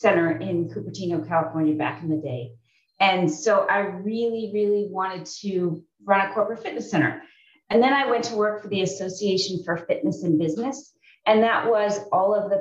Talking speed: 185 wpm